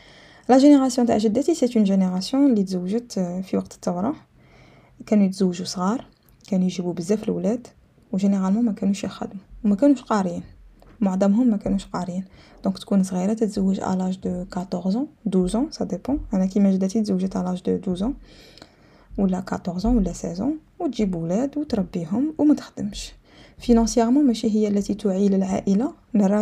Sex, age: female, 20-39